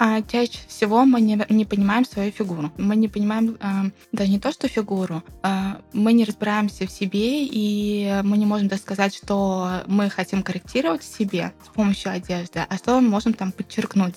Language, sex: Russian, female